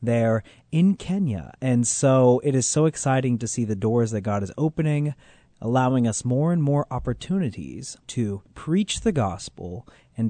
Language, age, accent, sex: English, 30-49, American, male